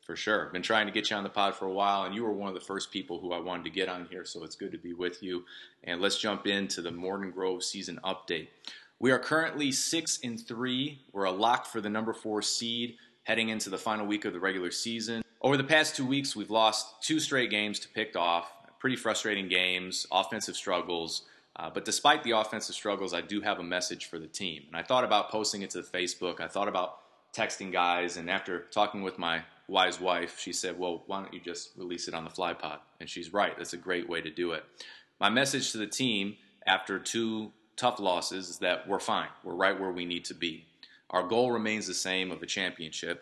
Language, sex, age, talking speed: English, male, 30-49, 240 wpm